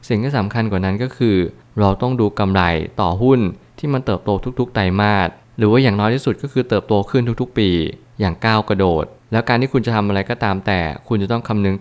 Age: 20-39